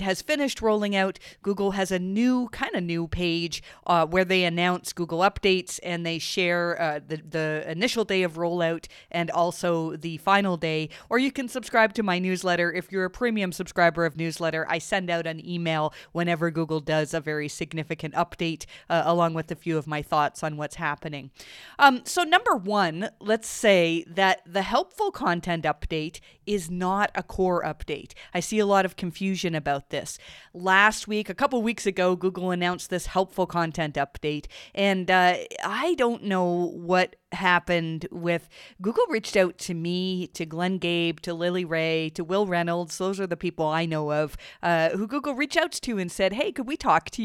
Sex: female